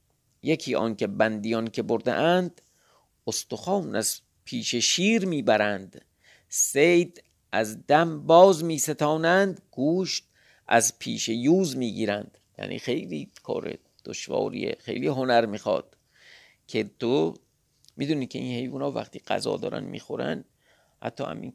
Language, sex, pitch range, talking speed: Persian, male, 110-155 Hz, 120 wpm